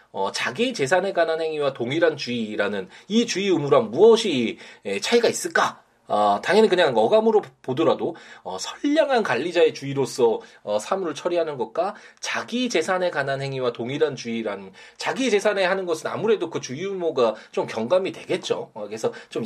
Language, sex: Korean, male